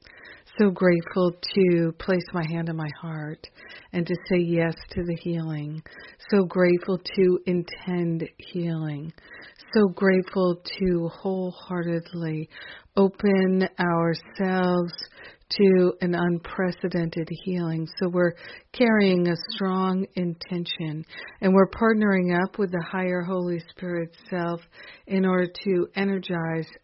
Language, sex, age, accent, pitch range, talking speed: English, female, 50-69, American, 170-185 Hz, 115 wpm